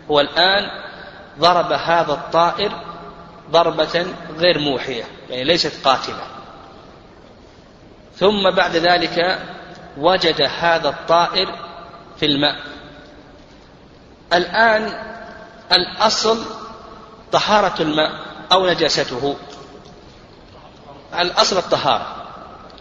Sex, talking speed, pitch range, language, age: male, 70 wpm, 155-215 Hz, Arabic, 40-59